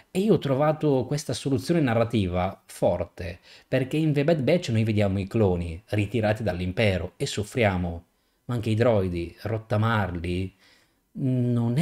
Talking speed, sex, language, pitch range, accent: 135 wpm, male, Italian, 95-130 Hz, native